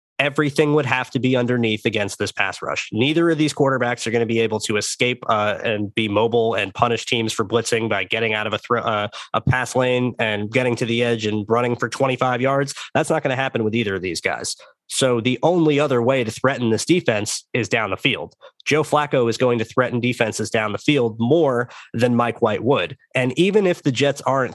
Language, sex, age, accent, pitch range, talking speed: English, male, 20-39, American, 110-140 Hz, 225 wpm